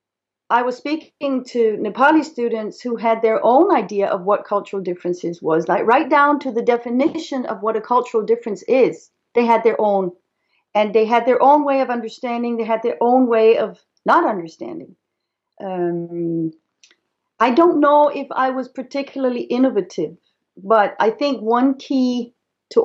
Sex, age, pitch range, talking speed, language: female, 40-59, 220-260 Hz, 165 wpm, English